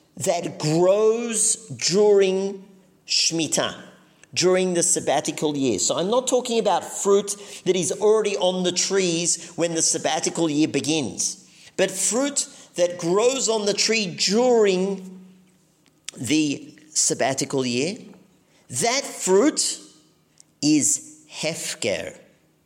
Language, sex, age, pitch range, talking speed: English, male, 50-69, 140-195 Hz, 105 wpm